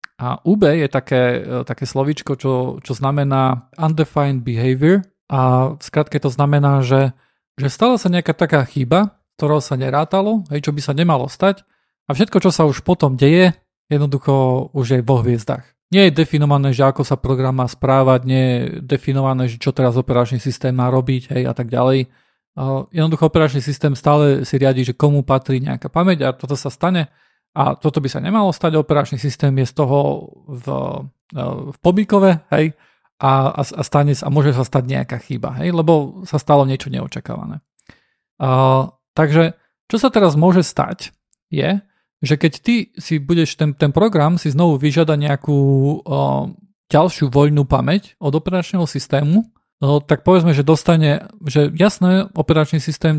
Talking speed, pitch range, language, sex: 165 wpm, 135-165 Hz, Slovak, male